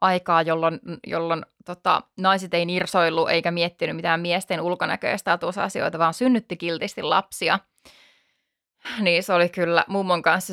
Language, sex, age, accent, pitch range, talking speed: Finnish, female, 20-39, native, 175-215 Hz, 135 wpm